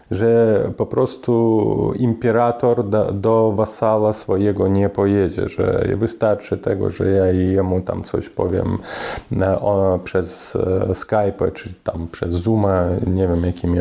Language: Polish